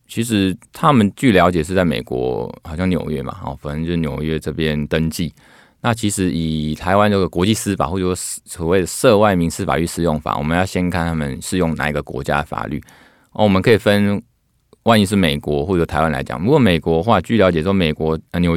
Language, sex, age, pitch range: Chinese, male, 20-39, 80-95 Hz